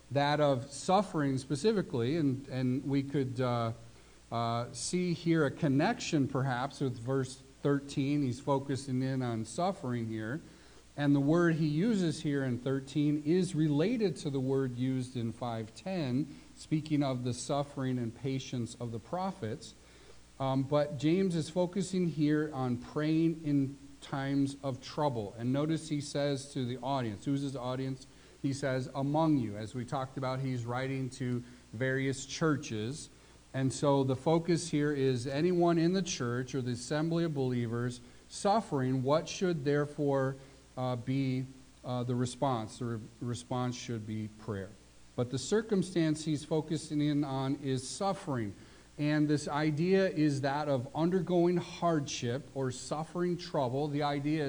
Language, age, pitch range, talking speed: English, 50-69, 130-155 Hz, 150 wpm